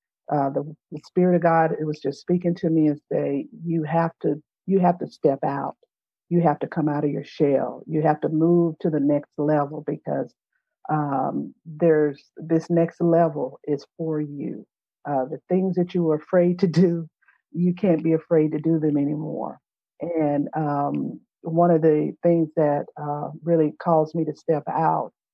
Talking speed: 185 wpm